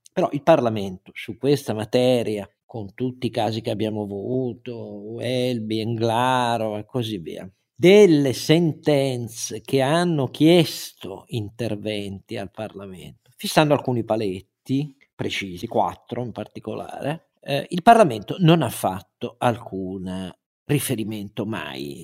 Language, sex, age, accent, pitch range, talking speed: Italian, male, 50-69, native, 115-155 Hz, 115 wpm